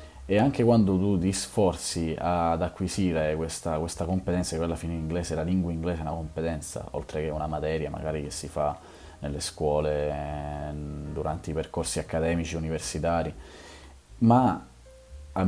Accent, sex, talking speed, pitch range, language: native, male, 150 wpm, 80-95 Hz, Italian